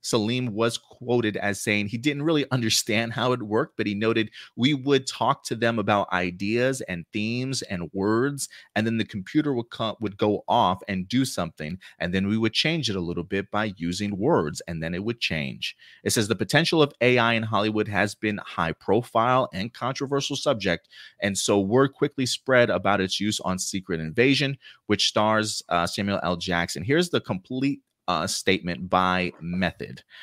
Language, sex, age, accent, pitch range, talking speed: English, male, 30-49, American, 95-125 Hz, 185 wpm